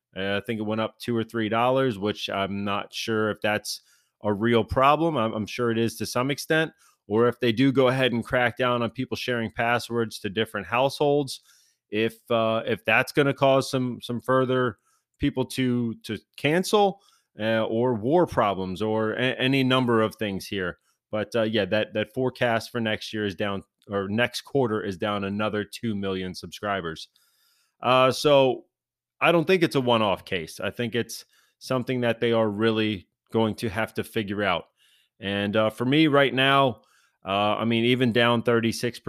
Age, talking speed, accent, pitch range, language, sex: 30-49, 185 wpm, American, 105-125 Hz, English, male